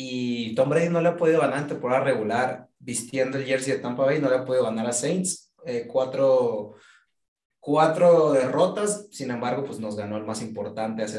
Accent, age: Mexican, 30-49